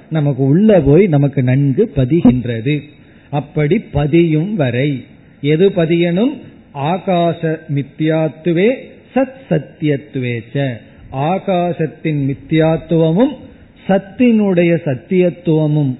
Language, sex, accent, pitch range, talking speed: Tamil, male, native, 135-170 Hz, 75 wpm